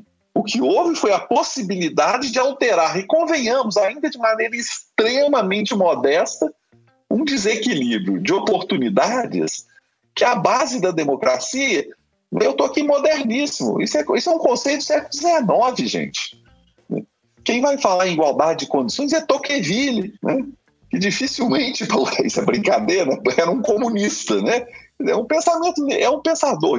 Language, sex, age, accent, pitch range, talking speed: Portuguese, male, 40-59, Brazilian, 180-285 Hz, 140 wpm